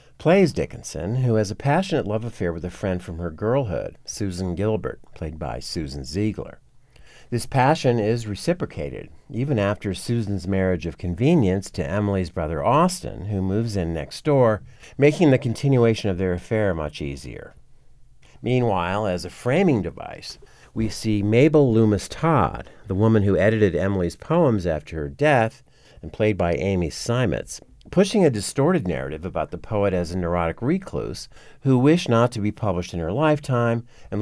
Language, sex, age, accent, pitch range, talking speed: English, male, 50-69, American, 90-130 Hz, 160 wpm